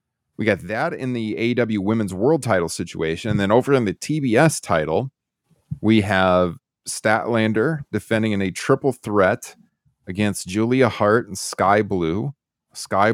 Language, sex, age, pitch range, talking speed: English, male, 30-49, 95-115 Hz, 145 wpm